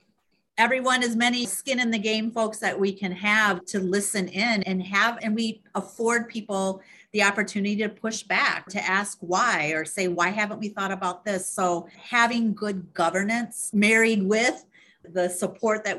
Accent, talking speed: American, 175 wpm